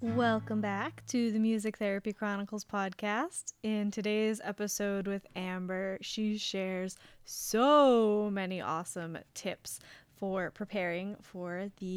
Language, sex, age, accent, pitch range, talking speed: English, female, 10-29, American, 180-210 Hz, 115 wpm